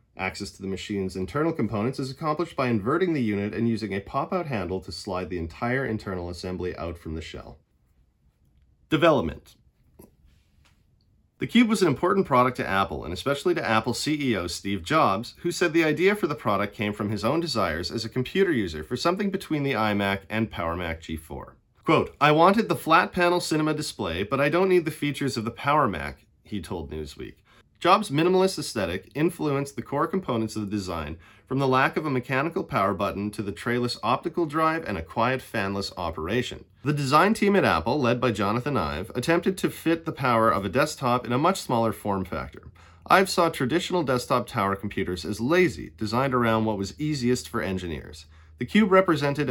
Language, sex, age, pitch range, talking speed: English, male, 30-49, 95-150 Hz, 190 wpm